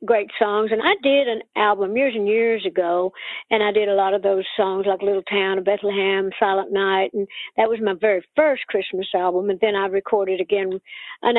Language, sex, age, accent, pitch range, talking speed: English, female, 60-79, American, 195-235 Hz, 210 wpm